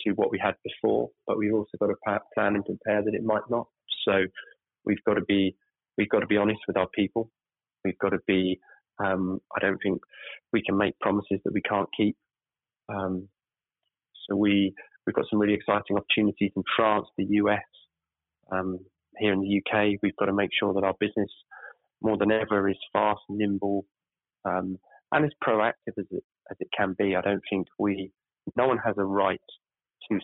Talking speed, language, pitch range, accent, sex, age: 195 wpm, English, 95-110 Hz, British, male, 20-39